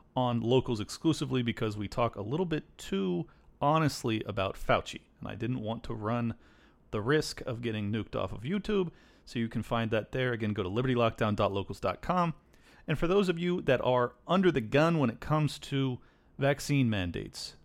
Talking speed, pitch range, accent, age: 180 wpm, 115-155 Hz, American, 30-49